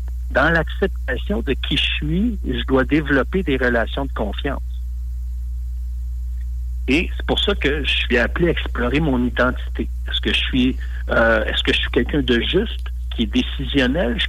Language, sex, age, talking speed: French, male, 60-79, 170 wpm